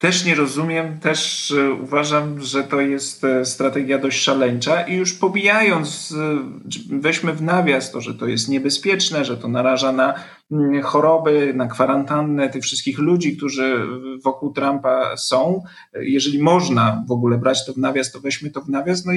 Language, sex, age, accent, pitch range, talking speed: Polish, male, 40-59, native, 140-180 Hz, 155 wpm